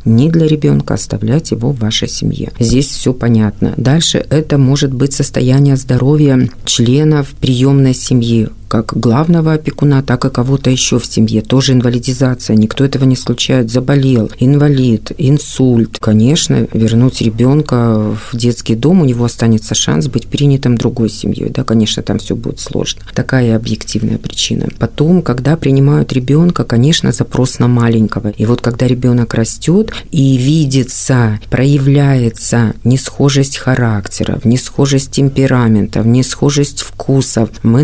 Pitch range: 115-140 Hz